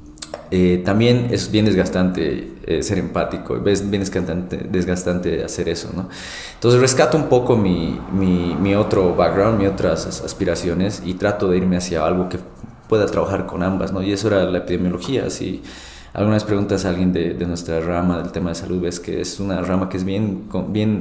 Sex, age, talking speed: male, 20-39, 190 wpm